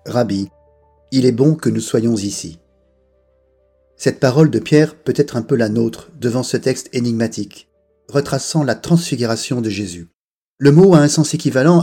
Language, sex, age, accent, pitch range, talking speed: French, male, 40-59, French, 110-155 Hz, 165 wpm